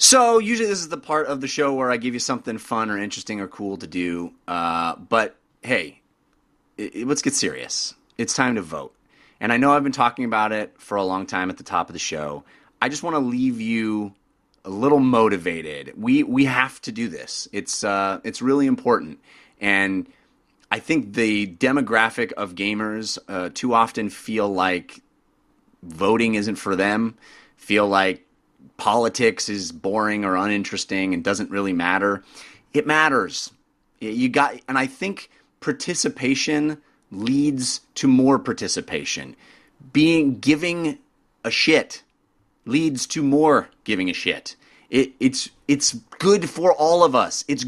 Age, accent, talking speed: 30-49, American, 160 wpm